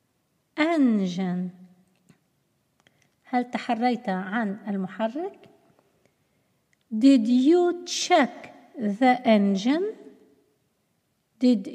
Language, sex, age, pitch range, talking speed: Arabic, female, 50-69, 215-290 Hz, 55 wpm